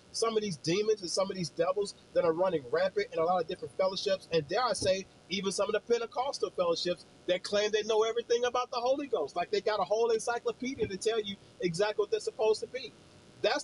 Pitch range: 165-240 Hz